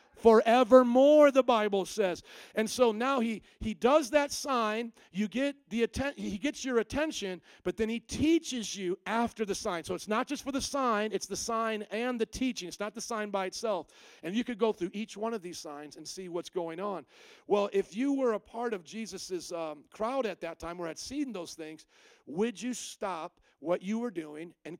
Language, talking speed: English, 215 wpm